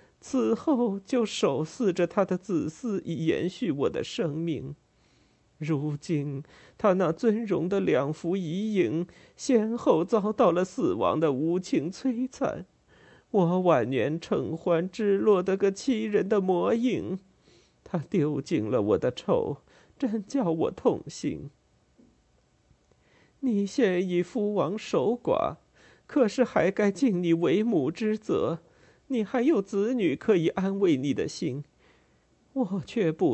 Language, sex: Chinese, male